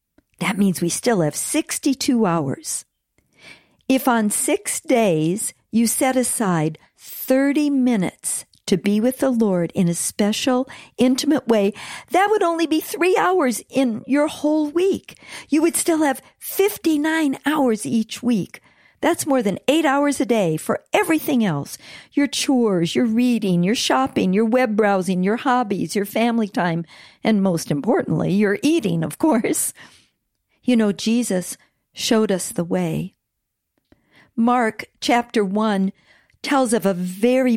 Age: 50-69